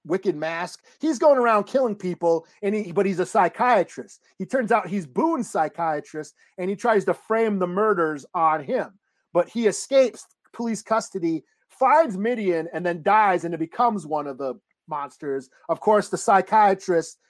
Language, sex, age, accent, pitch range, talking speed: English, male, 30-49, American, 165-215 Hz, 170 wpm